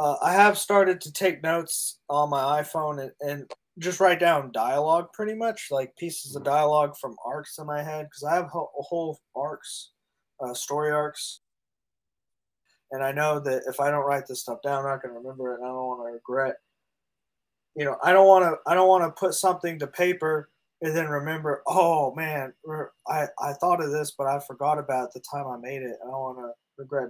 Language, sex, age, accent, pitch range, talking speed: English, male, 20-39, American, 130-160 Hz, 215 wpm